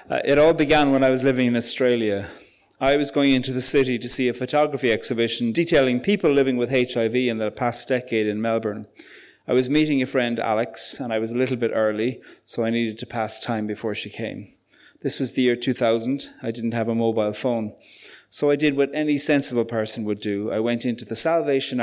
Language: English